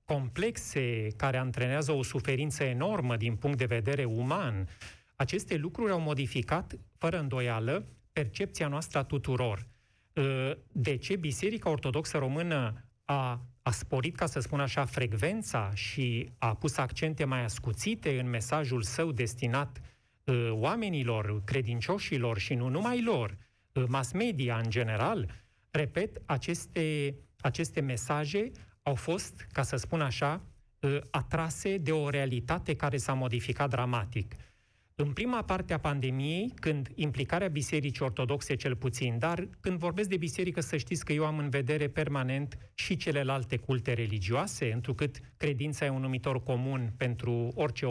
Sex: male